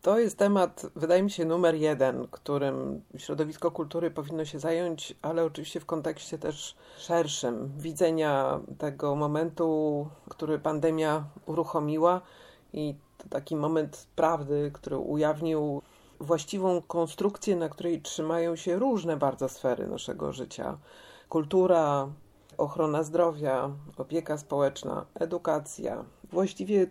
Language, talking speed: Polish, 110 wpm